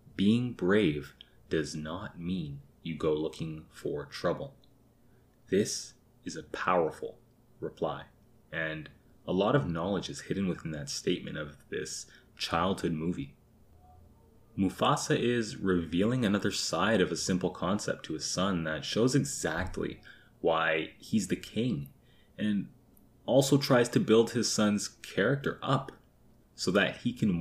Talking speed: 135 wpm